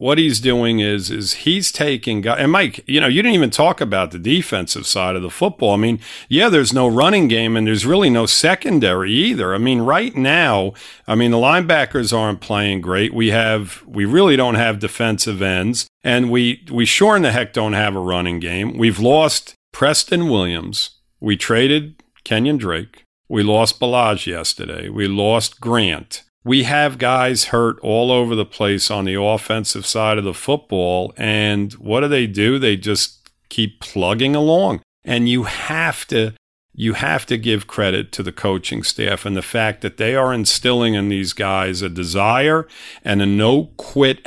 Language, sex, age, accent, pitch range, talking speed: English, male, 50-69, American, 100-120 Hz, 185 wpm